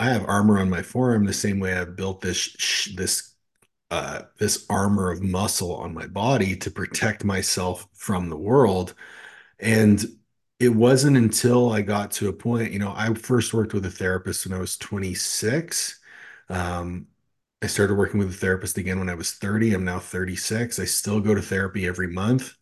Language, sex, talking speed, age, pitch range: English, male, 185 wpm, 30-49, 95-115 Hz